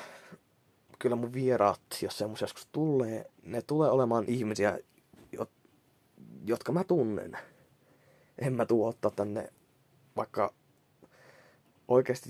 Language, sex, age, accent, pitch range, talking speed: Finnish, male, 20-39, native, 110-135 Hz, 100 wpm